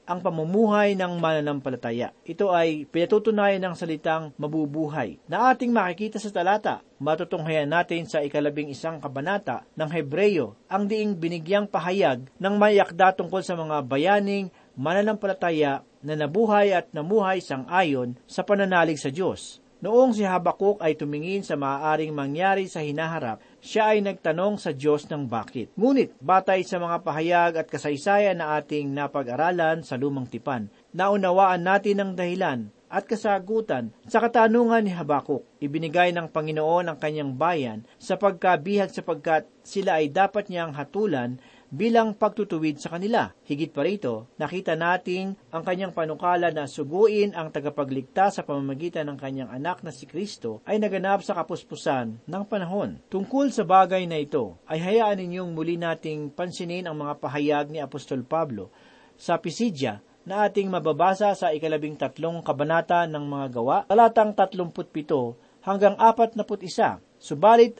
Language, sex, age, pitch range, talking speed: Filipino, male, 40-59, 150-200 Hz, 145 wpm